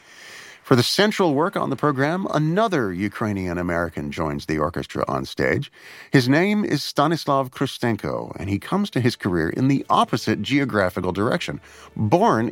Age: 50-69